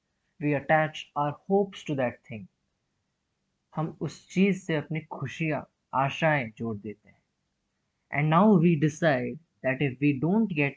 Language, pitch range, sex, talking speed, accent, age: English, 130-170 Hz, male, 90 wpm, Indian, 20-39